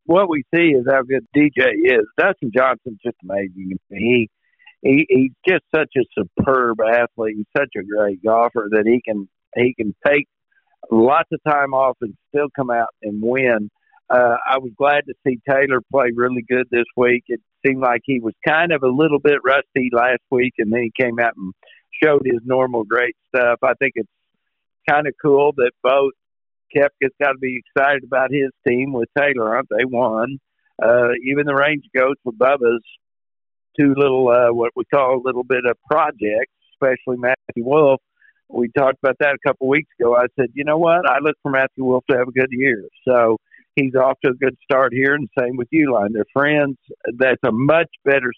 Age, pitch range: 60-79, 120-140 Hz